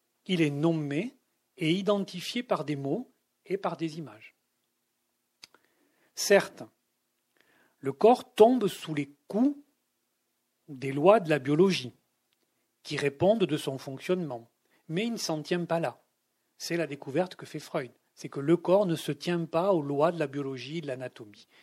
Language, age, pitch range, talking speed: French, 40-59, 140-200 Hz, 160 wpm